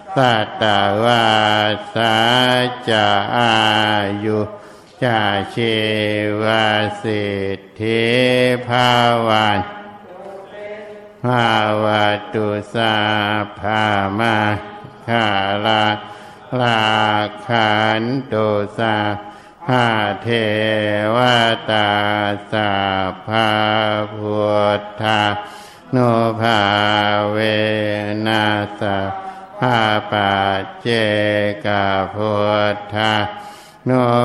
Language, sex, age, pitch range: Thai, male, 60-79, 105-115 Hz